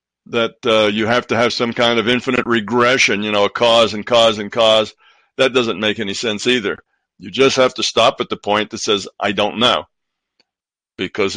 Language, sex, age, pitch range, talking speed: English, male, 60-79, 105-125 Hz, 205 wpm